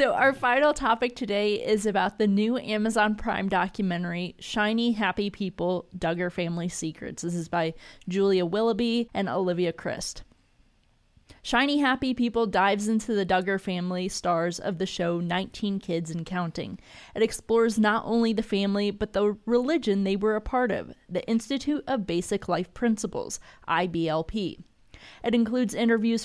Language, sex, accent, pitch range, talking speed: English, female, American, 185-225 Hz, 150 wpm